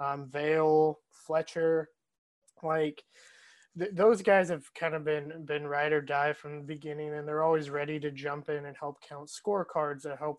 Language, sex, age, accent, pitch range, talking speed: English, male, 20-39, American, 145-160 Hz, 180 wpm